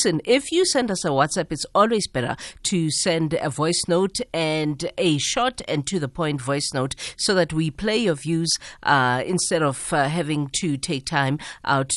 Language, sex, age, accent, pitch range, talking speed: English, female, 50-69, South African, 145-185 Hz, 190 wpm